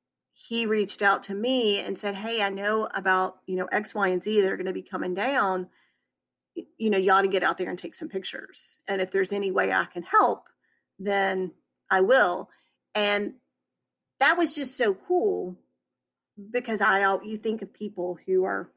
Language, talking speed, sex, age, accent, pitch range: English, 190 wpm, female, 40-59, American, 185-240 Hz